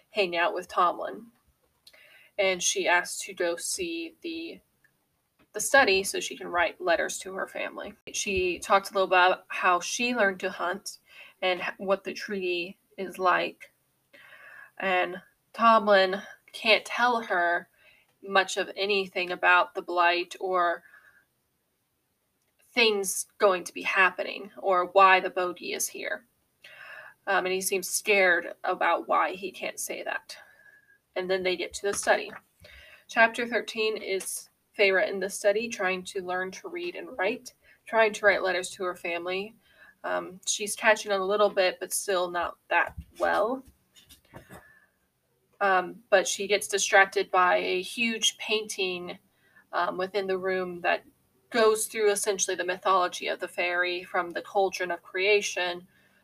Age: 20-39